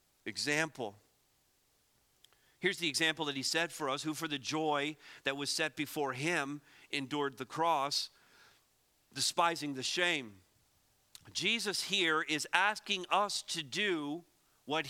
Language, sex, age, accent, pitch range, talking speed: English, male, 50-69, American, 155-215 Hz, 130 wpm